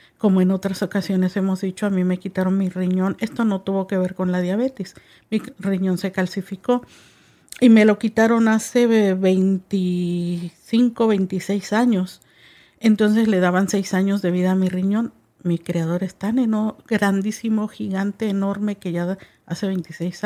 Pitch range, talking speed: 180-210 Hz, 160 wpm